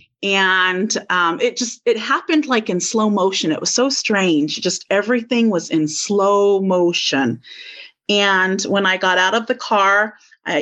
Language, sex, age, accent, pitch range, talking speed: English, female, 30-49, American, 185-235 Hz, 165 wpm